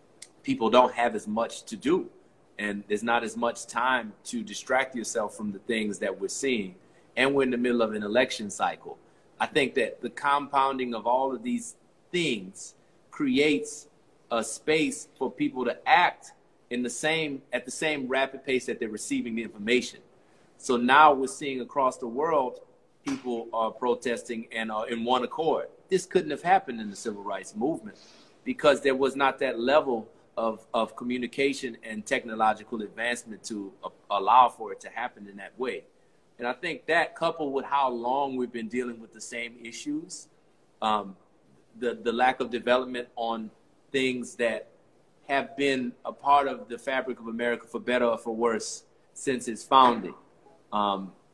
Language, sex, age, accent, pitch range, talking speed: English, male, 30-49, American, 115-150 Hz, 175 wpm